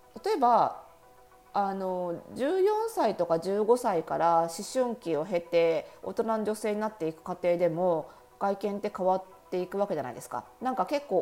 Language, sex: Japanese, female